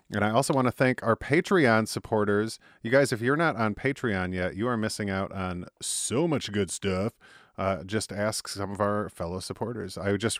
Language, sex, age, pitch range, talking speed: English, male, 30-49, 95-115 Hz, 210 wpm